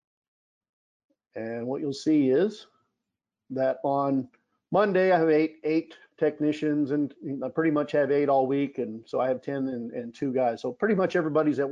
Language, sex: English, male